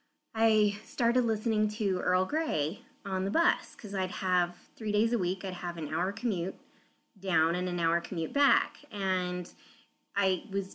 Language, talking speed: English, 165 wpm